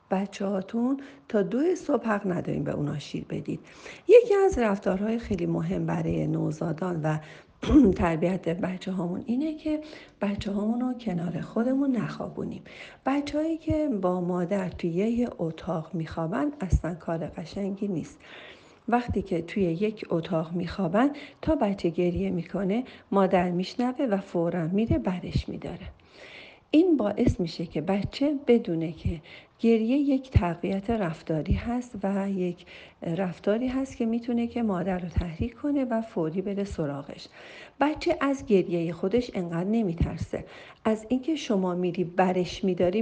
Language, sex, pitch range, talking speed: Persian, female, 175-240 Hz, 135 wpm